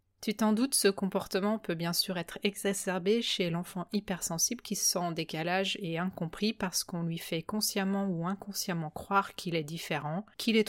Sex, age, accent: female, 30-49, French